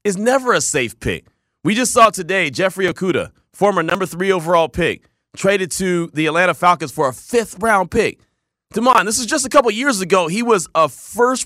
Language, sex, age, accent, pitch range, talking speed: English, male, 30-49, American, 165-260 Hz, 200 wpm